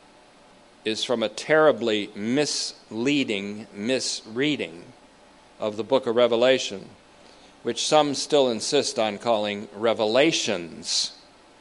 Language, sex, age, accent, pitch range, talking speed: English, male, 50-69, American, 105-135 Hz, 95 wpm